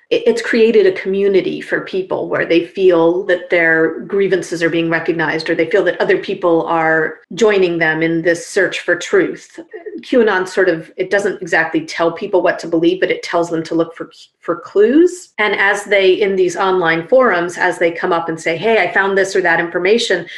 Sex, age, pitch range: female, 30-49, 170-215 Hz